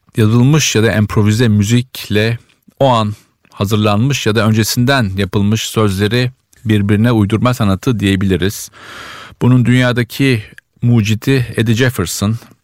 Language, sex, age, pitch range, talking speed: Turkish, male, 50-69, 100-120 Hz, 105 wpm